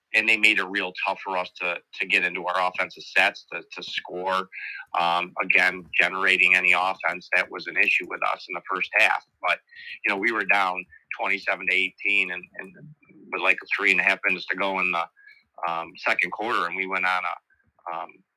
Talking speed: 210 wpm